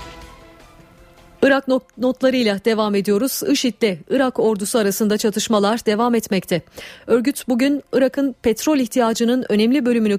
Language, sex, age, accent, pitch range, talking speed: Turkish, female, 40-59, native, 200-240 Hz, 110 wpm